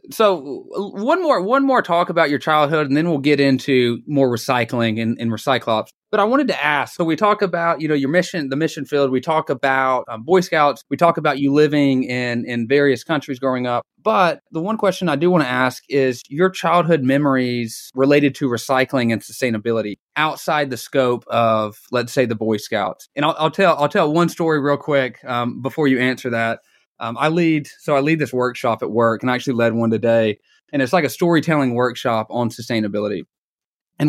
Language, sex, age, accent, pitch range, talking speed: English, male, 20-39, American, 120-155 Hz, 210 wpm